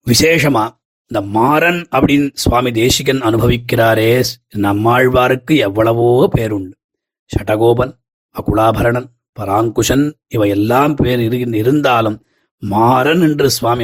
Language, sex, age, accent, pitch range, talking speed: Tamil, male, 30-49, native, 115-140 Hz, 80 wpm